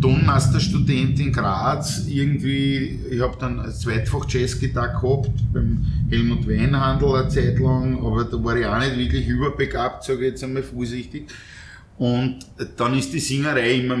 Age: 30-49